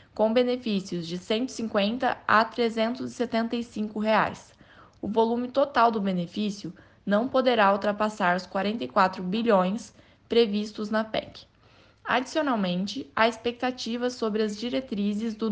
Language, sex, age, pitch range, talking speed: Portuguese, female, 10-29, 195-235 Hz, 115 wpm